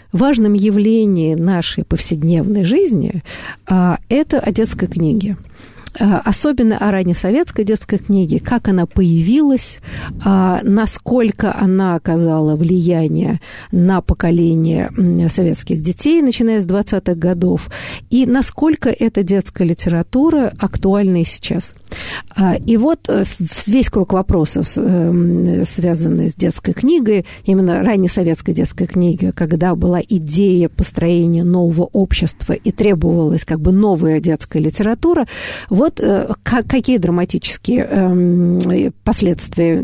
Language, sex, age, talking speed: Russian, female, 50-69, 105 wpm